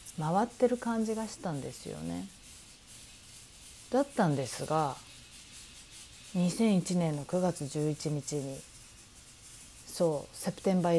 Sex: female